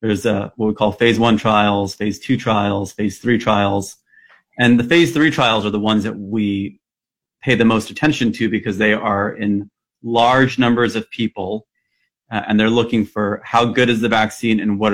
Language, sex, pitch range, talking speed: English, male, 105-130 Hz, 195 wpm